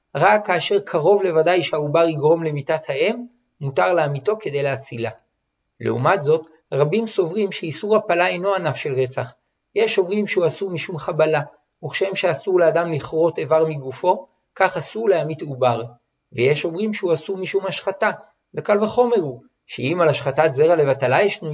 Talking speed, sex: 150 wpm, male